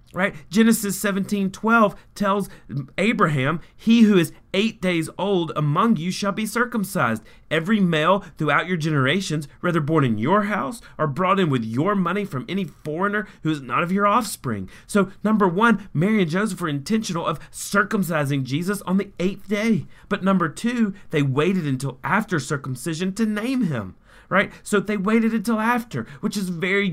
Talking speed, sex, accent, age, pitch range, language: 170 wpm, male, American, 30-49, 155-205 Hz, English